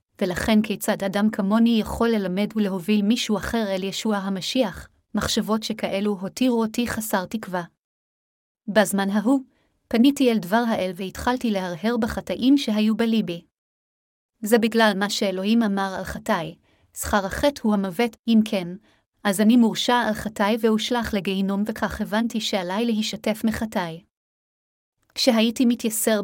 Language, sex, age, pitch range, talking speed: Hebrew, female, 30-49, 195-230 Hz, 130 wpm